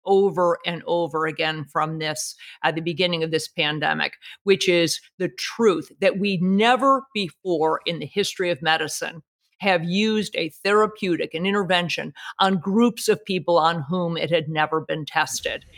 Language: English